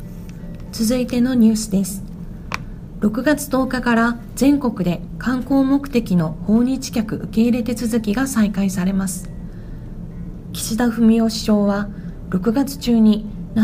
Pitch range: 185-235 Hz